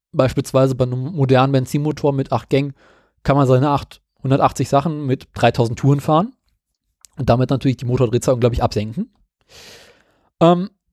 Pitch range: 135-165 Hz